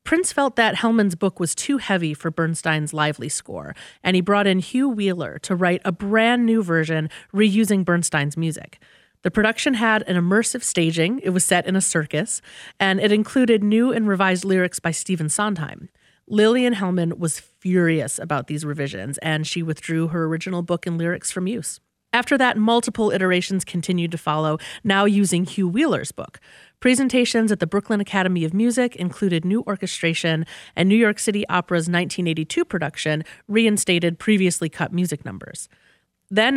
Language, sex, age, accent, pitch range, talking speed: English, female, 30-49, American, 165-215 Hz, 165 wpm